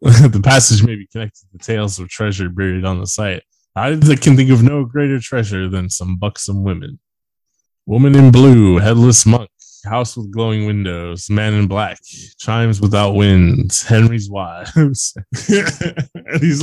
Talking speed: 150 wpm